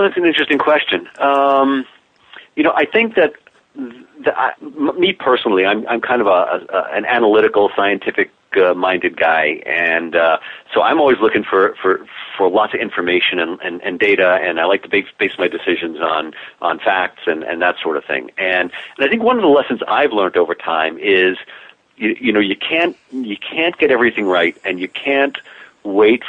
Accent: American